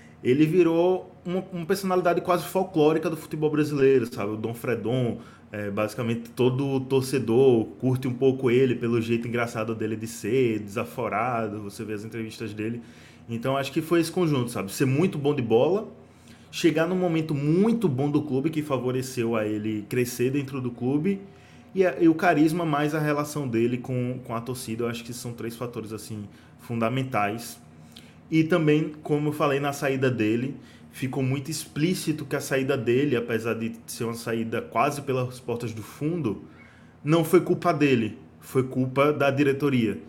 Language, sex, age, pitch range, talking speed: Portuguese, male, 20-39, 115-155 Hz, 170 wpm